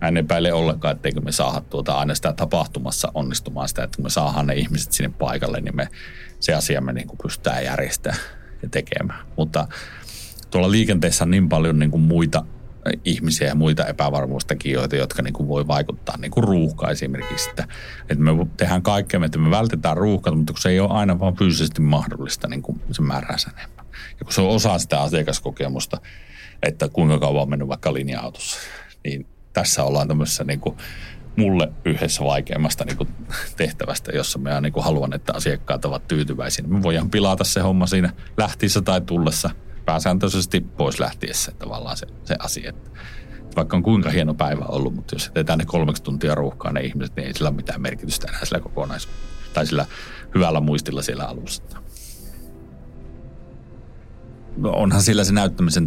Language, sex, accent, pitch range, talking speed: Finnish, male, native, 70-90 Hz, 165 wpm